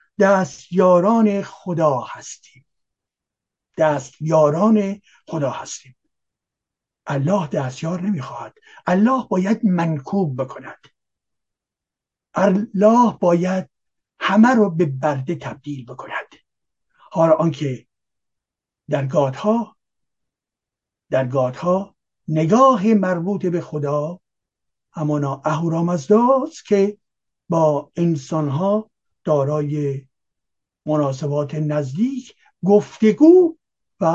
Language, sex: Persian, male